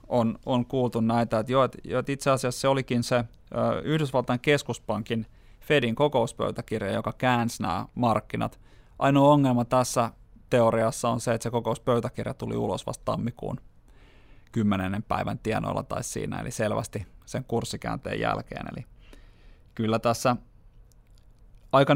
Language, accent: Finnish, native